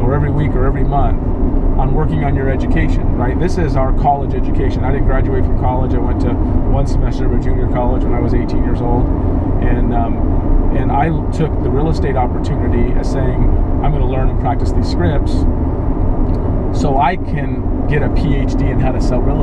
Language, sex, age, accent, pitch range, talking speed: English, male, 30-49, American, 85-100 Hz, 205 wpm